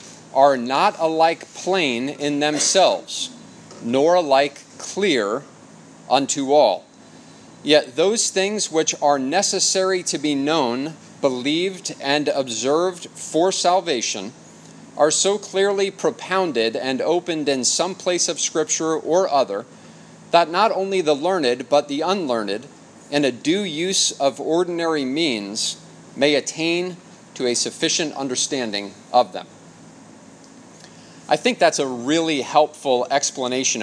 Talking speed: 120 wpm